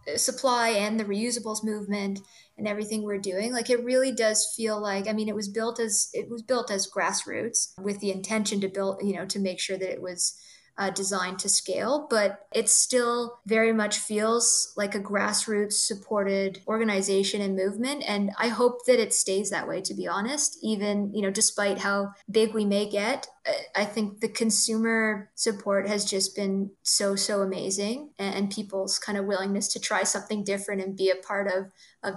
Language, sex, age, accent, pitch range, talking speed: English, female, 20-39, American, 195-220 Hz, 190 wpm